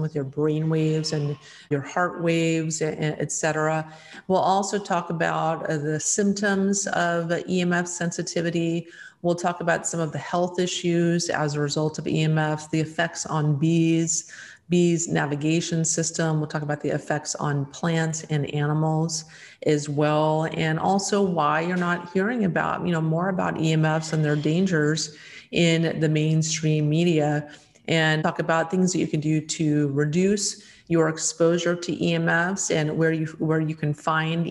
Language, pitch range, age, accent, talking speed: English, 150-170 Hz, 40-59, American, 155 wpm